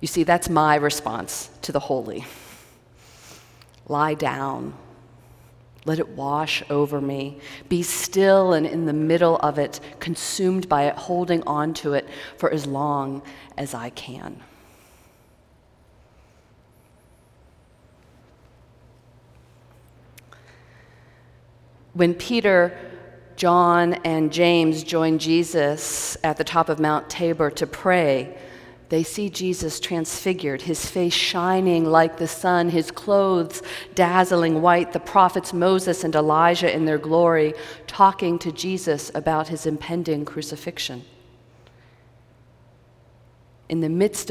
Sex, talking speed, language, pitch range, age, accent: female, 110 wpm, English, 140-175 Hz, 40-59, American